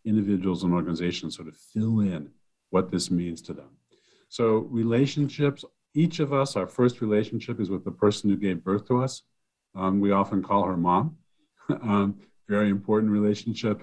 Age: 50-69